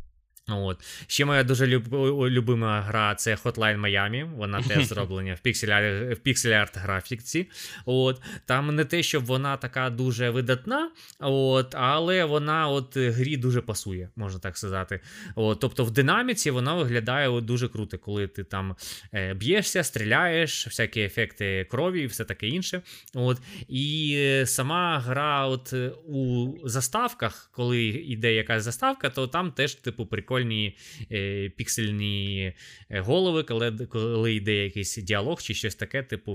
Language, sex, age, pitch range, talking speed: Ukrainian, male, 20-39, 105-135 Hz, 135 wpm